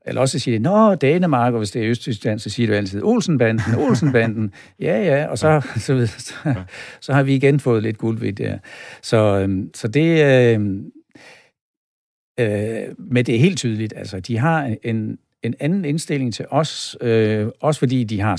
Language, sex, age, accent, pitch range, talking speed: Danish, male, 60-79, native, 105-130 Hz, 185 wpm